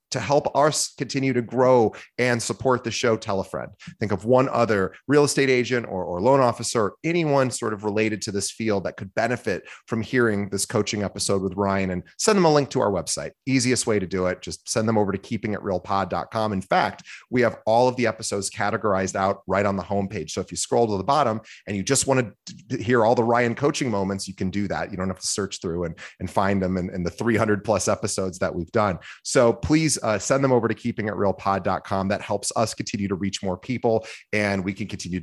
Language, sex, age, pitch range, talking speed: English, male, 30-49, 100-125 Hz, 230 wpm